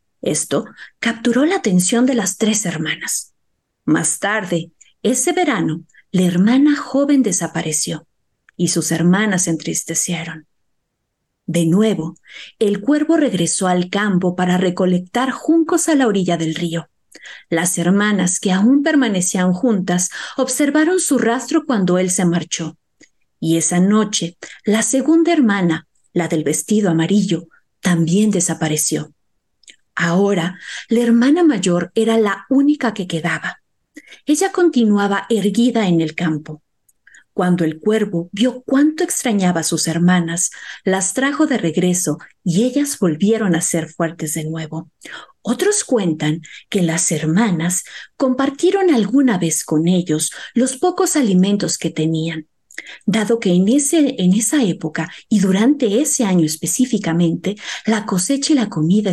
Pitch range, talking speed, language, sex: 170-250 Hz, 130 wpm, Spanish, female